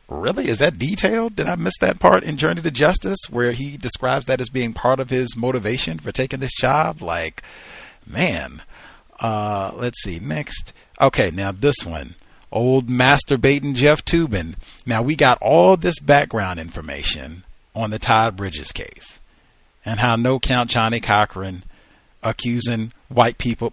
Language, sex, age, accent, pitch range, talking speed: English, male, 40-59, American, 95-130 Hz, 155 wpm